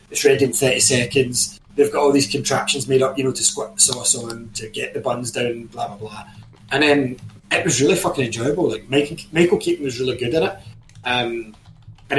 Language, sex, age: English, male, 20-39